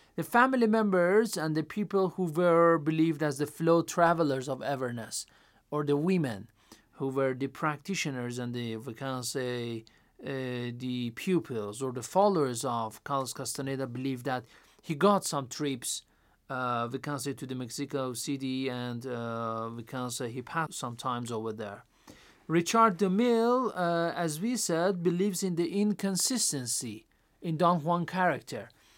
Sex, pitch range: male, 130-175 Hz